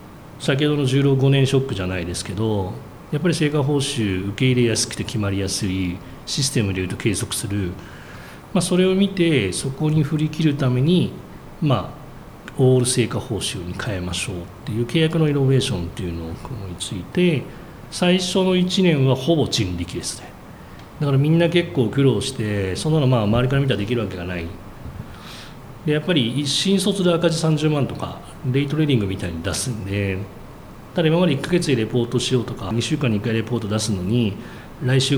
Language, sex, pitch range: Japanese, male, 100-150 Hz